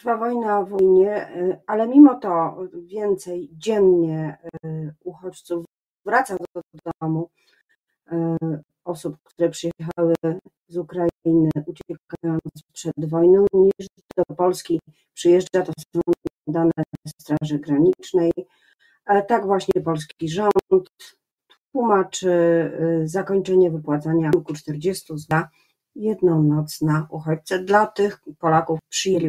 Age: 40-59